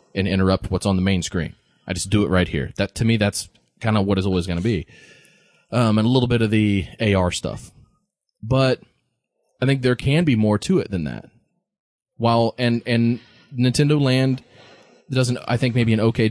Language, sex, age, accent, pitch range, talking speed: English, male, 20-39, American, 95-115 Hz, 205 wpm